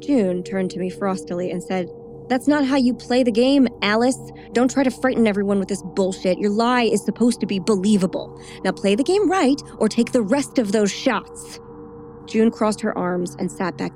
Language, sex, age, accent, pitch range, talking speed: English, female, 20-39, American, 175-215 Hz, 210 wpm